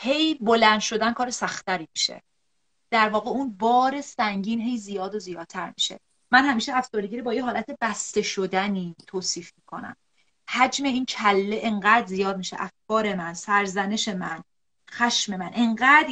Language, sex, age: Persian, female, 30-49